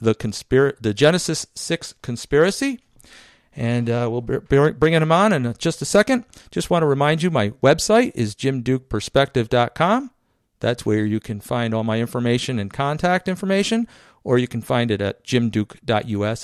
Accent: American